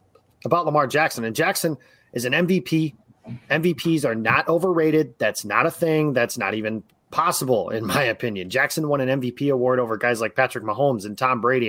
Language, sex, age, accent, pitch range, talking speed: English, male, 30-49, American, 115-155 Hz, 185 wpm